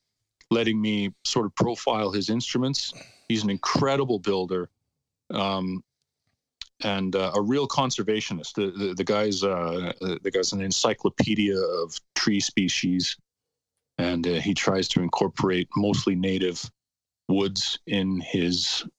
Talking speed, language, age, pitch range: 125 wpm, English, 40-59, 95-115 Hz